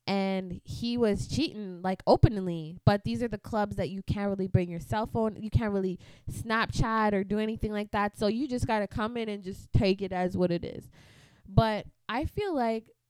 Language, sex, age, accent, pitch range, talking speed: English, female, 20-39, American, 170-210 Hz, 210 wpm